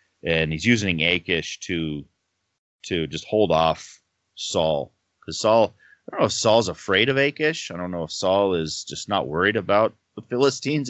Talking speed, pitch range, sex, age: 175 wpm, 85-115 Hz, male, 30-49